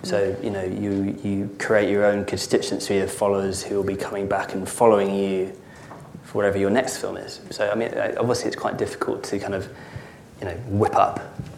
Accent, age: British, 20-39